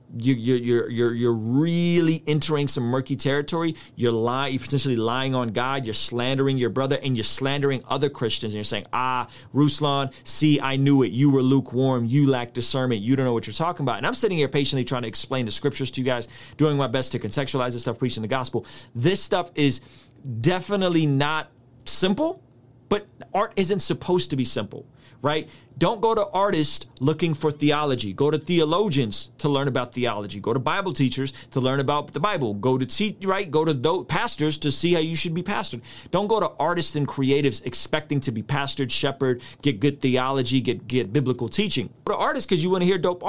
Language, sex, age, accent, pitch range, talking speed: English, male, 30-49, American, 125-155 Hz, 205 wpm